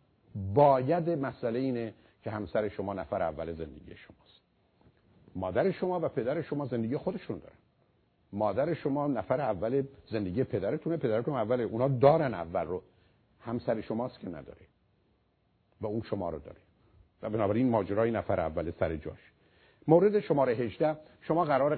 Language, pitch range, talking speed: Persian, 100-130 Hz, 140 wpm